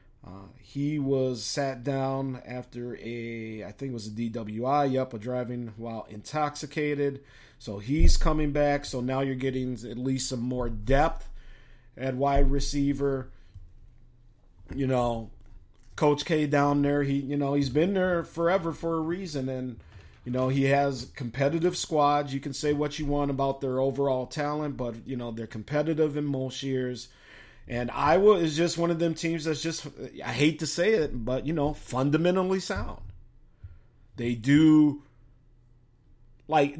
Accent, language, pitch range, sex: American, English, 120-150 Hz, male